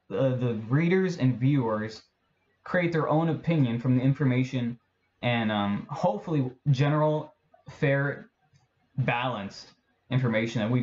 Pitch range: 115-140 Hz